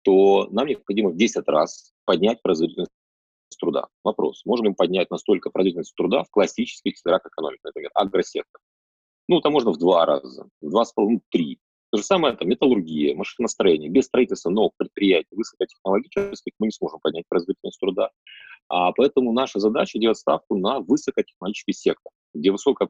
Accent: native